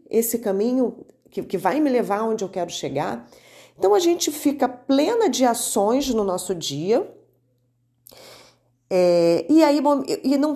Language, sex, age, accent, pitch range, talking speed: Portuguese, female, 30-49, Brazilian, 190-280 Hz, 135 wpm